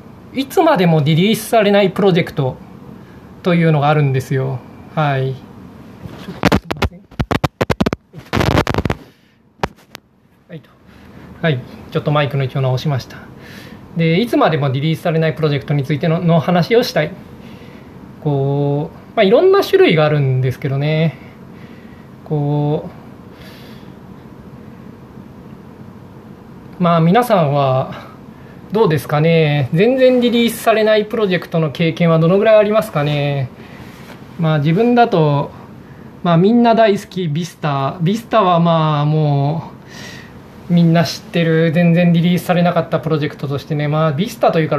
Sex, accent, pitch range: male, native, 145-190 Hz